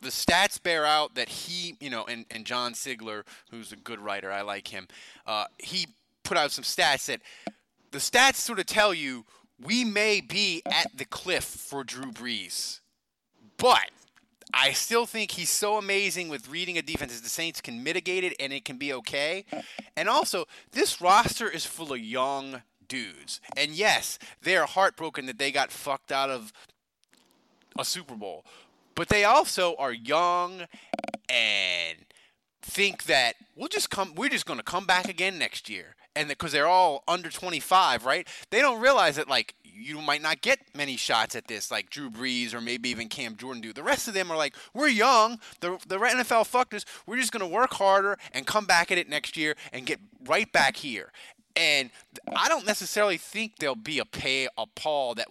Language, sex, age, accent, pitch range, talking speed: English, male, 20-39, American, 135-210 Hz, 195 wpm